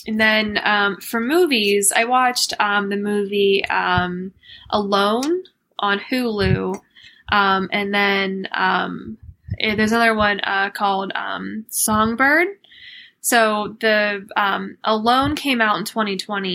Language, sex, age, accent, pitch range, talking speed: English, female, 10-29, American, 195-230 Hz, 120 wpm